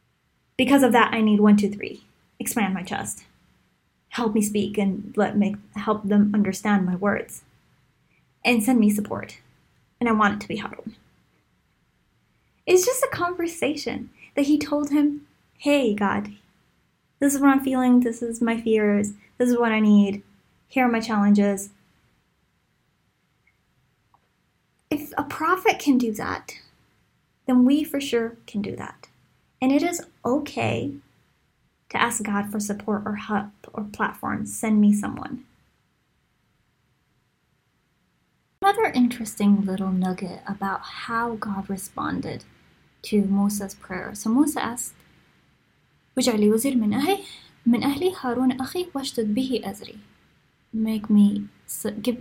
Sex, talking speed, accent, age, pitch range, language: female, 125 wpm, American, 10-29, 205-270 Hz, English